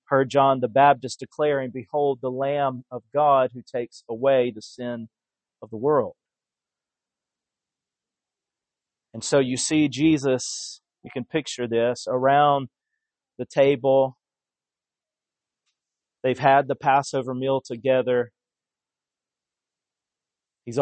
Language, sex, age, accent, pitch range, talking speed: English, male, 40-59, American, 120-135 Hz, 105 wpm